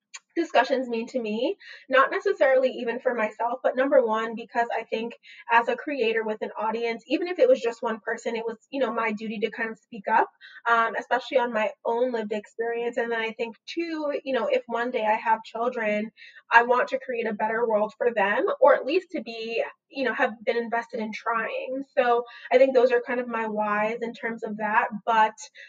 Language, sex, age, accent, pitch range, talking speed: English, female, 20-39, American, 225-260 Hz, 220 wpm